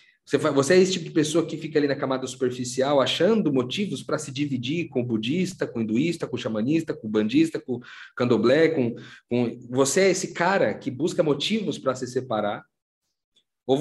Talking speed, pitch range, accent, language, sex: 175 wpm, 110-160 Hz, Brazilian, Portuguese, male